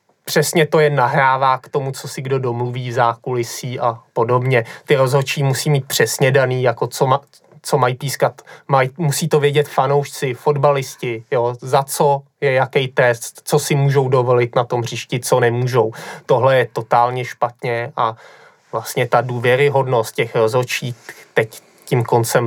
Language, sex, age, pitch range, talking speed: Czech, male, 20-39, 130-150 Hz, 160 wpm